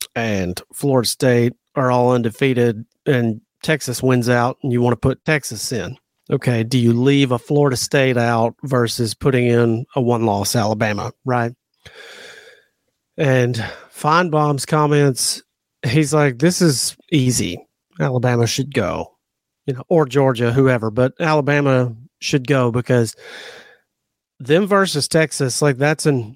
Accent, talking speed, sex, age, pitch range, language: American, 135 wpm, male, 40-59, 120-145 Hz, English